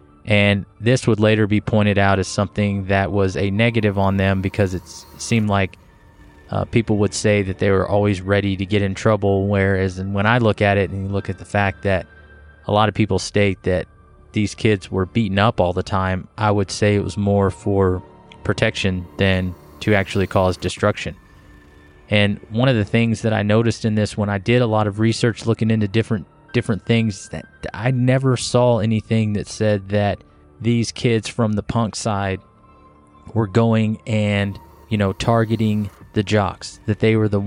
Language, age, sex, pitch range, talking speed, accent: English, 20-39, male, 95-110 Hz, 190 wpm, American